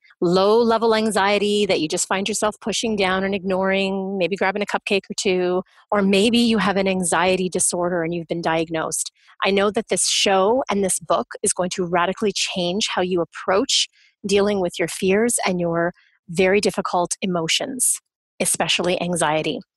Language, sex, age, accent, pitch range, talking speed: English, female, 30-49, American, 180-210 Hz, 165 wpm